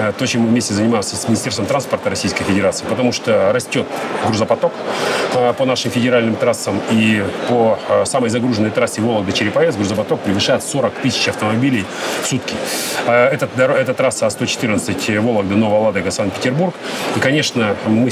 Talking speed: 135 wpm